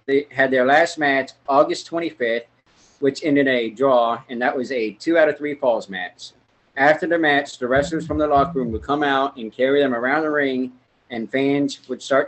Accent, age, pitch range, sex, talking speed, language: American, 40-59, 125-155 Hz, male, 215 wpm, English